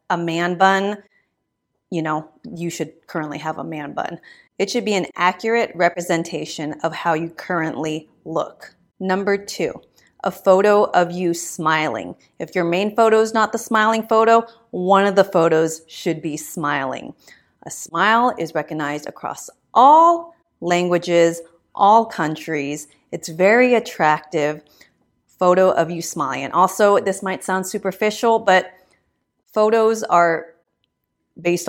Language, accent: English, American